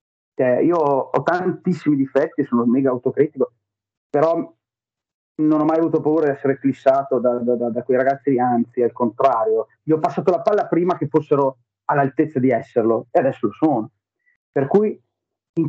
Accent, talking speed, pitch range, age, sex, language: native, 170 wpm, 135-205 Hz, 30-49, male, Italian